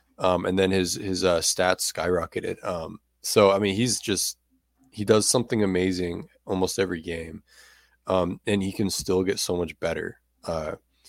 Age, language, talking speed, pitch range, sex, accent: 20-39, English, 170 wpm, 85-95 Hz, male, American